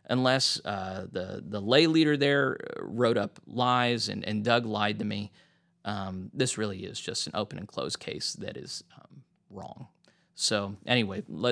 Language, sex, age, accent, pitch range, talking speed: English, male, 30-49, American, 105-135 Hz, 165 wpm